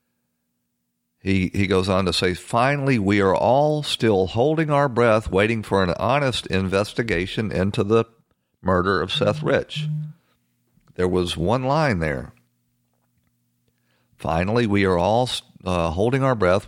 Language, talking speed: English, 135 wpm